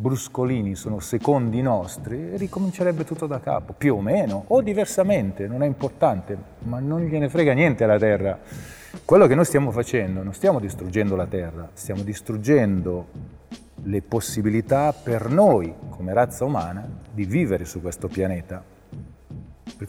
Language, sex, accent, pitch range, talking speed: Italian, male, native, 110-150 Hz, 145 wpm